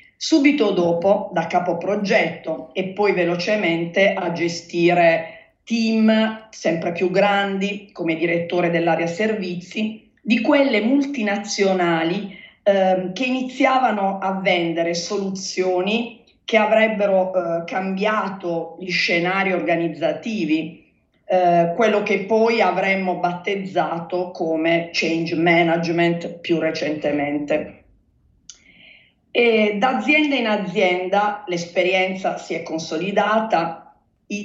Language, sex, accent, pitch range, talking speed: Italian, female, native, 170-210 Hz, 95 wpm